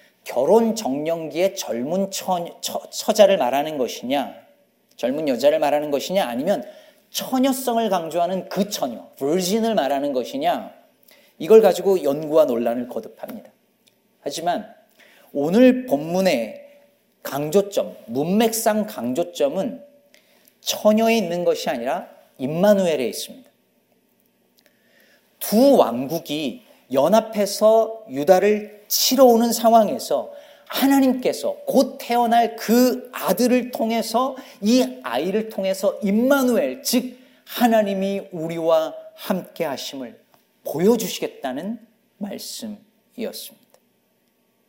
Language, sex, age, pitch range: Korean, male, 40-59, 190-255 Hz